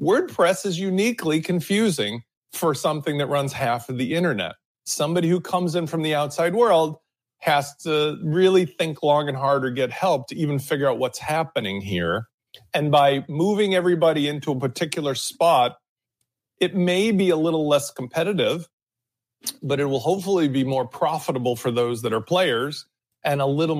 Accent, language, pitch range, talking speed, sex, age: American, English, 140-180 Hz, 170 wpm, male, 40-59